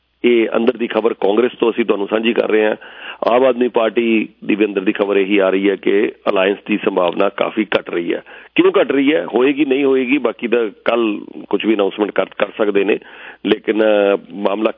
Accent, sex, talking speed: Indian, male, 125 wpm